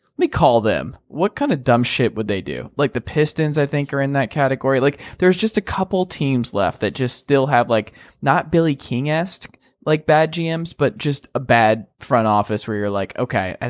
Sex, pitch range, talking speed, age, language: male, 120-160 Hz, 220 wpm, 20-39, English